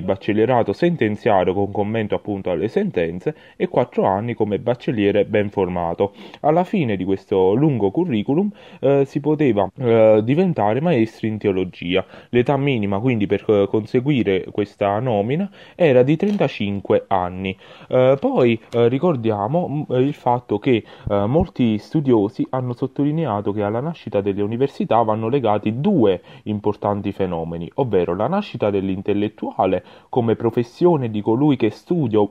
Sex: male